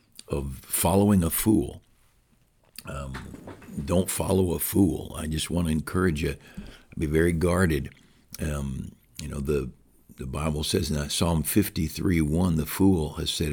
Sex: male